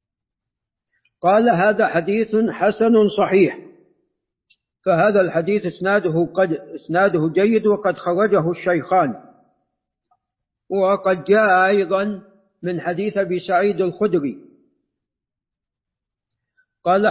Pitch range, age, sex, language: 175-210 Hz, 50-69, male, Arabic